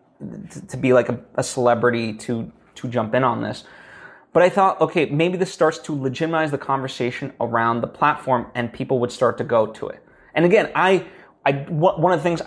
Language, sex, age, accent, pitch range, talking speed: English, male, 20-39, American, 130-175 Hz, 195 wpm